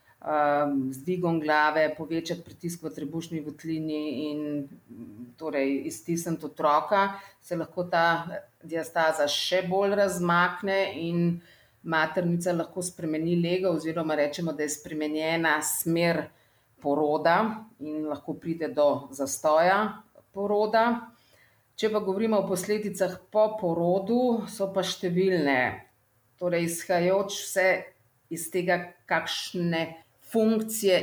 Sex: female